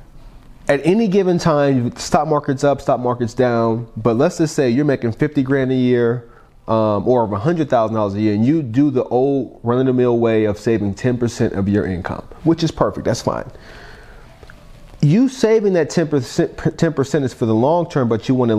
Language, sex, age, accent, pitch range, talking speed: English, male, 30-49, American, 110-150 Hz, 185 wpm